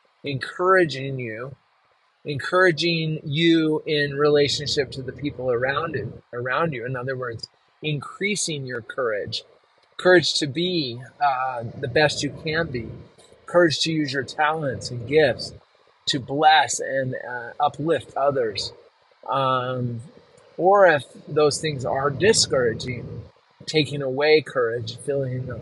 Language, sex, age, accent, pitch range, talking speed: English, male, 30-49, American, 125-160 Hz, 120 wpm